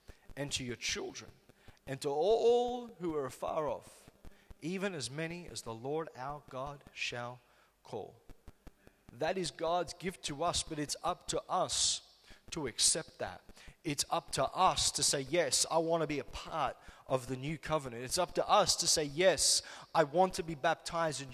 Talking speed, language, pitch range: 185 wpm, English, 135-175 Hz